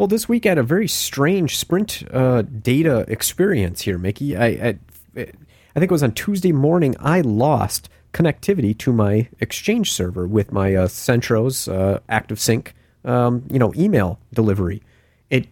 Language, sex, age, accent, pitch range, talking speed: English, male, 40-59, American, 100-130 Hz, 160 wpm